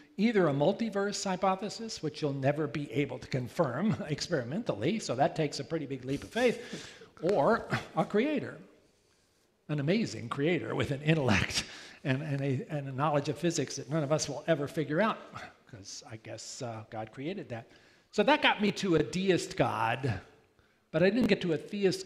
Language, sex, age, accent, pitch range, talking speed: English, male, 50-69, American, 140-175 Hz, 185 wpm